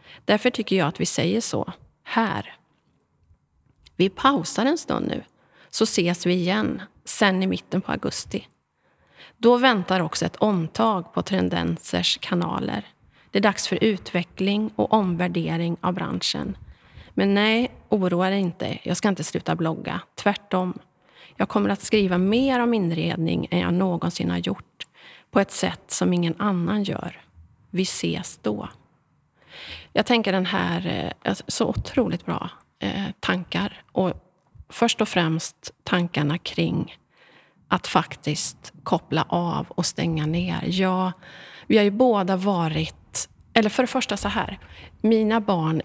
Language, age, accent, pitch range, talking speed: Swedish, 30-49, native, 165-205 Hz, 140 wpm